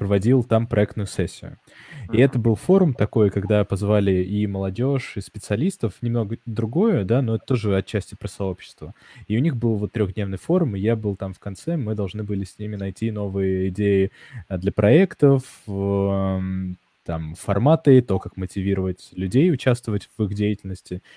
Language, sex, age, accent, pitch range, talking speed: Russian, male, 20-39, native, 100-120 Hz, 160 wpm